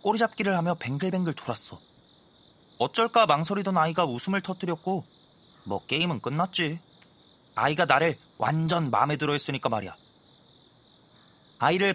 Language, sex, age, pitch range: Korean, male, 30-49, 130-185 Hz